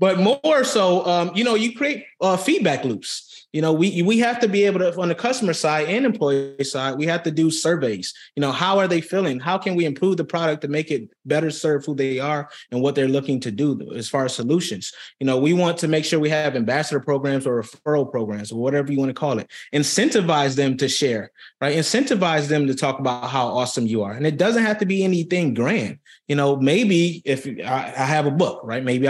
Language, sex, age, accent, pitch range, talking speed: English, male, 20-39, American, 135-170 Hz, 235 wpm